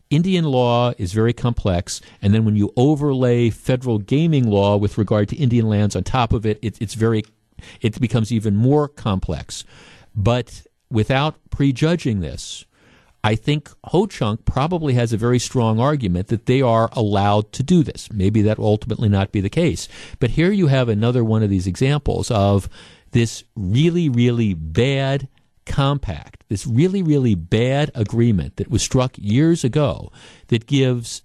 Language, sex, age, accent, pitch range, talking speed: English, male, 50-69, American, 105-135 Hz, 160 wpm